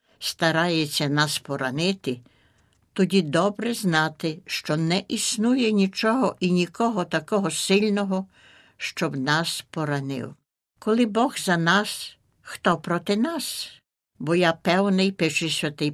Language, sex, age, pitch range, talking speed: Ukrainian, female, 60-79, 150-195 Hz, 110 wpm